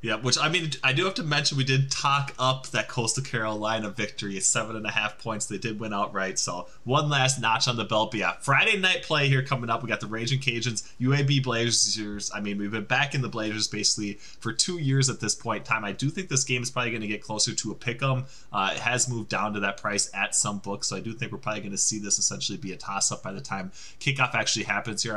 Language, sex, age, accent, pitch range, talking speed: English, male, 20-39, American, 105-130 Hz, 265 wpm